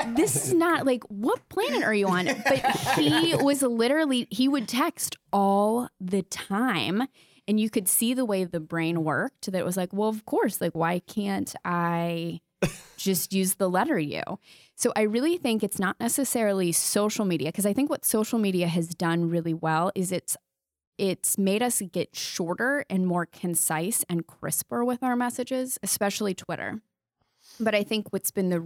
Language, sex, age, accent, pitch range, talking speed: English, female, 20-39, American, 175-220 Hz, 180 wpm